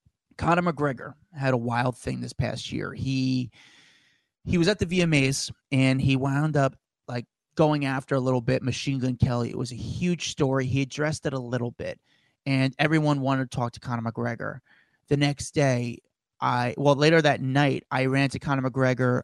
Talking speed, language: 185 wpm, English